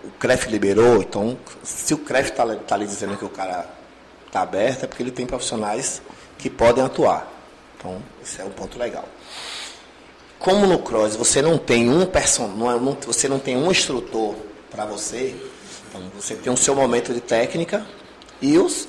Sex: male